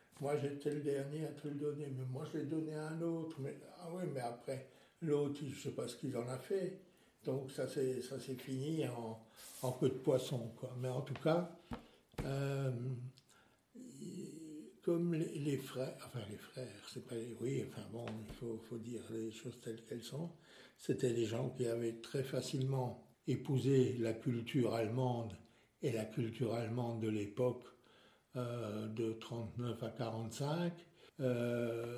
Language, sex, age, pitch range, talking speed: French, male, 60-79, 115-140 Hz, 175 wpm